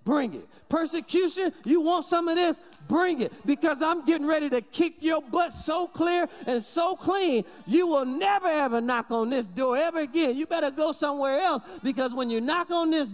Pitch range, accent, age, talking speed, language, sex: 225-315 Hz, American, 40-59, 200 wpm, English, male